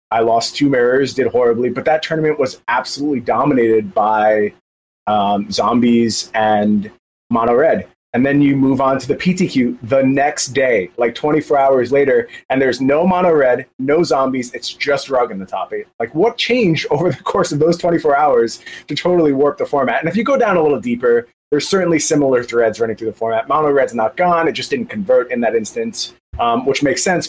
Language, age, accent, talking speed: English, 30-49, American, 200 wpm